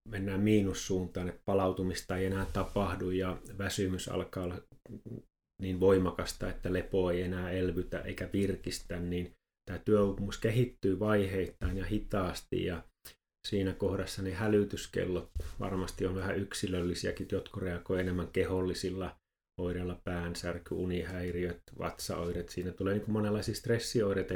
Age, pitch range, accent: 30-49, 90-100 Hz, native